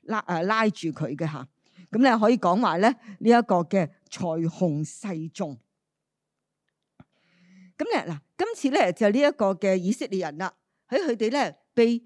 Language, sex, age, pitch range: Chinese, female, 50-69, 190-265 Hz